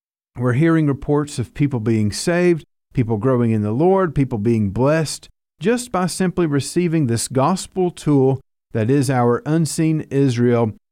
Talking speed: 150 wpm